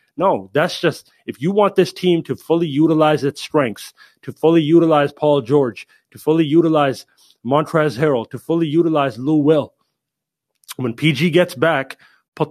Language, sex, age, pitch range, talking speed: English, male, 30-49, 135-155 Hz, 160 wpm